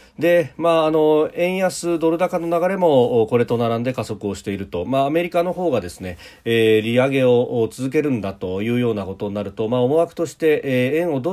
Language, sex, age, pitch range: Japanese, male, 40-59, 105-155 Hz